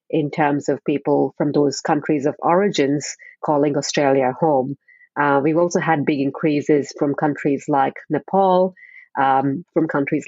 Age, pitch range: 30-49, 145-175 Hz